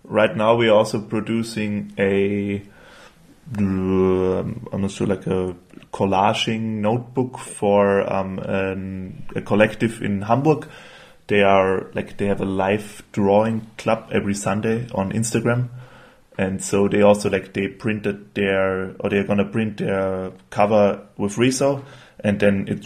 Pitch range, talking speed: 95-110 Hz, 135 wpm